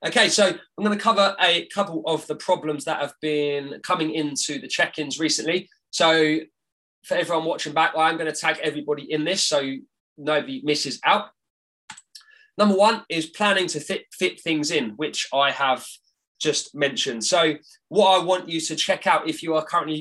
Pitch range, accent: 145-180 Hz, British